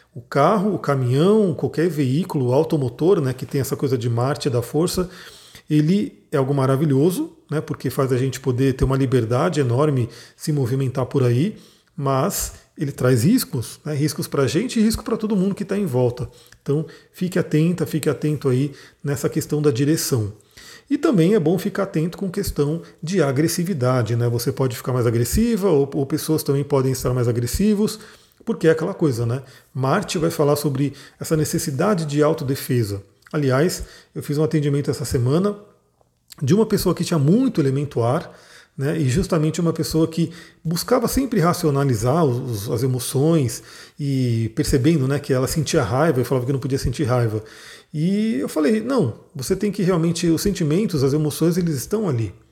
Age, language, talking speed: 40-59, Portuguese, 175 wpm